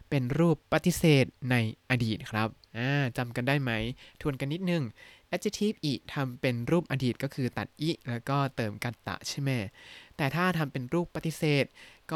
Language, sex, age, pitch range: Thai, male, 20-39, 120-160 Hz